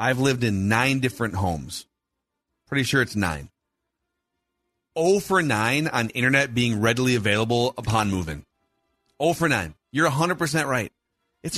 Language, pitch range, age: English, 110-140 Hz, 40-59